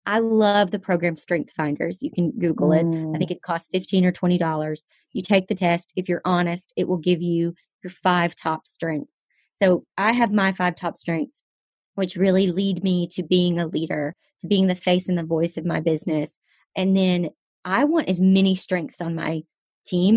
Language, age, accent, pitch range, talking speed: English, 30-49, American, 165-190 Hz, 200 wpm